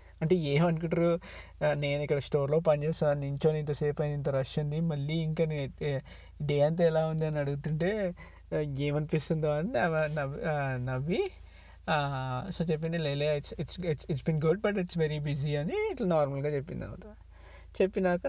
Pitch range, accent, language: 145-170 Hz, native, Telugu